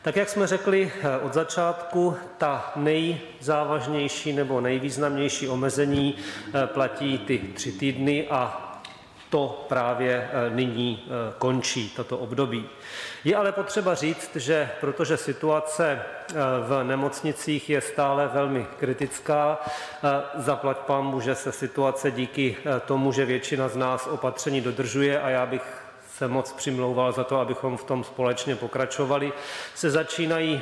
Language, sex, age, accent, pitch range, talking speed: Czech, male, 40-59, native, 130-150 Hz, 120 wpm